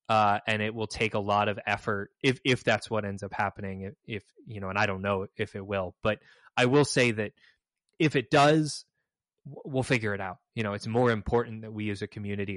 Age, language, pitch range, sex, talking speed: 20-39, English, 105-140 Hz, male, 235 wpm